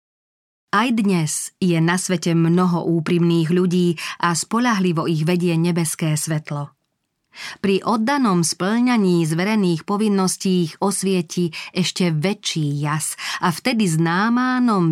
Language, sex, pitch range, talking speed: Slovak, female, 170-200 Hz, 110 wpm